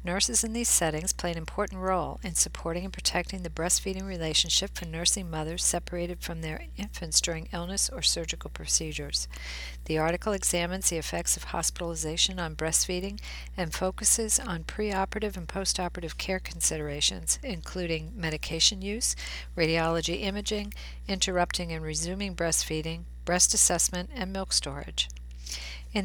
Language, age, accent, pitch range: English, 50-69, American, 160-190 Hz